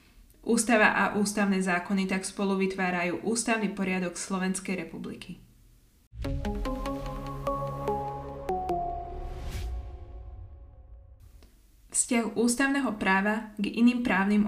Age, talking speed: 20-39, 70 wpm